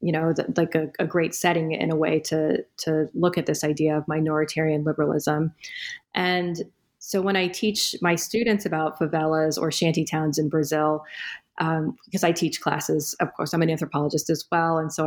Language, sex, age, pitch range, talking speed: English, female, 30-49, 165-195 Hz, 185 wpm